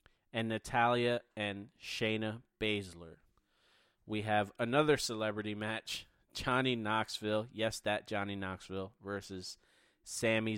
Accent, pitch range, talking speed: American, 105-120 Hz, 100 wpm